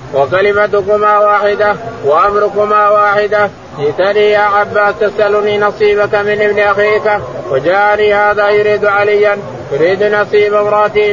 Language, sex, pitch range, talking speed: Arabic, male, 205-210 Hz, 105 wpm